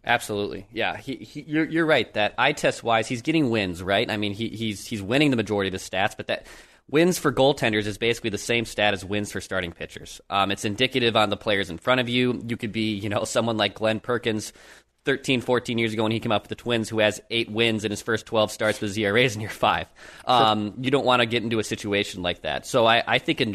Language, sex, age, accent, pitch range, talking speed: English, male, 20-39, American, 105-130 Hz, 255 wpm